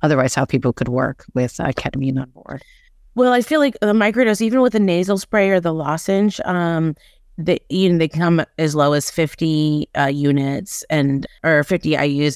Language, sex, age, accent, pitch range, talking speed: English, female, 30-49, American, 140-160 Hz, 200 wpm